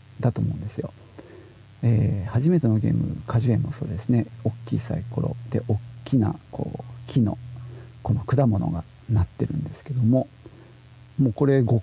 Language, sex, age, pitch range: Japanese, male, 50-69, 115-155 Hz